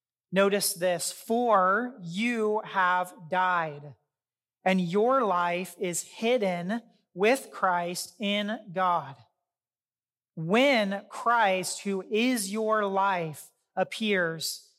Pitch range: 180-215 Hz